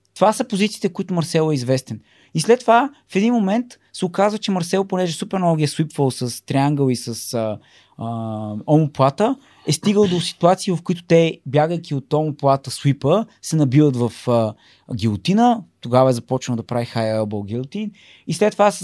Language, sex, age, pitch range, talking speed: Bulgarian, male, 20-39, 130-185 Hz, 175 wpm